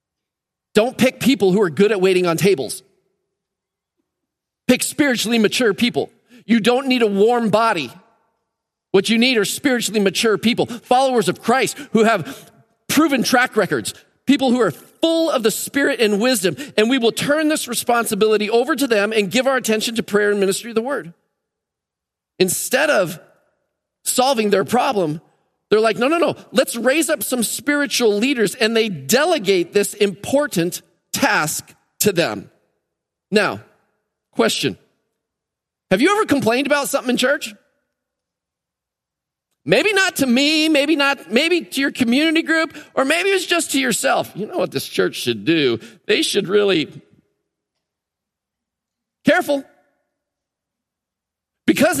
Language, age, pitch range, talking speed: English, 40-59, 205-275 Hz, 145 wpm